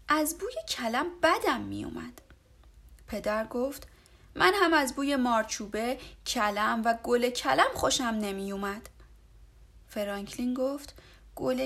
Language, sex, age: Persian, female, 30-49